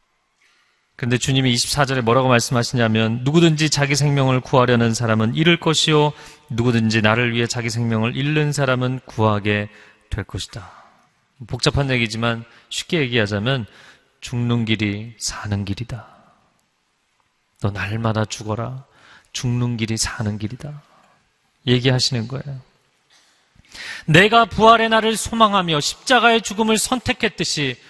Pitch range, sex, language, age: 115-150 Hz, male, Korean, 30-49